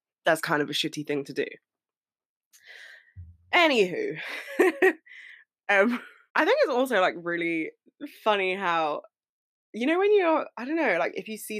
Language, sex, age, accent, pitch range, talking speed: English, female, 20-39, British, 175-255 Hz, 150 wpm